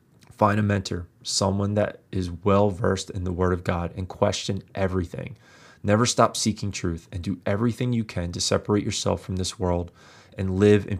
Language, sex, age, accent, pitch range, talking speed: English, male, 20-39, American, 95-105 Hz, 185 wpm